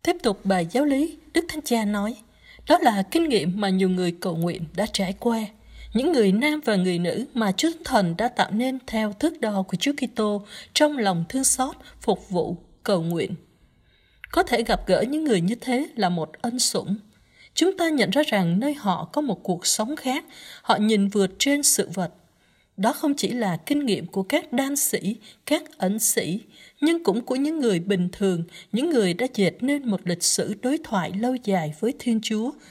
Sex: female